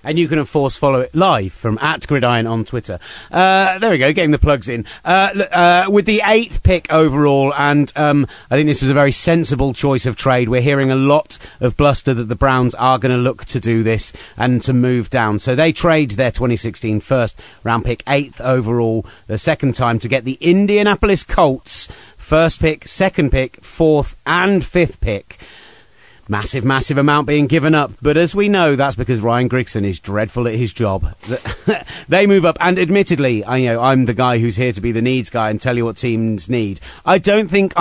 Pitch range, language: 115-150 Hz, English